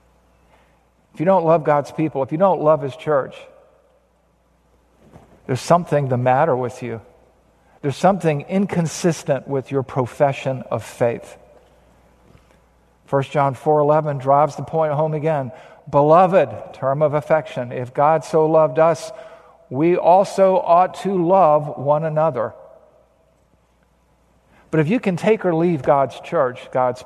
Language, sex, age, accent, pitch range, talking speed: English, male, 50-69, American, 125-160 Hz, 135 wpm